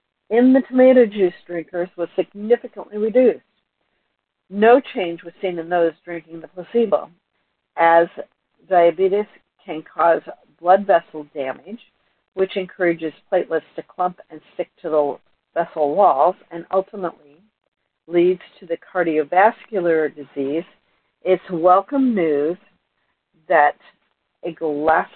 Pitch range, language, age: 165-200 Hz, English, 60-79